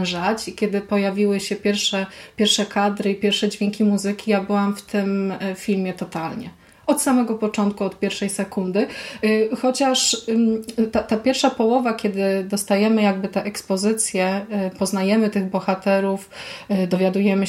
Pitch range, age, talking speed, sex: 190-225 Hz, 20-39, 125 wpm, female